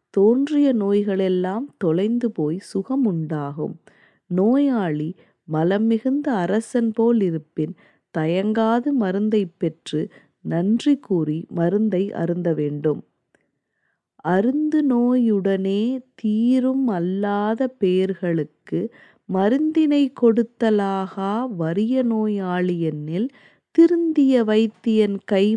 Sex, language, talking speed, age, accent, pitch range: female, Tamil, 75 wpm, 20-39, native, 170-235 Hz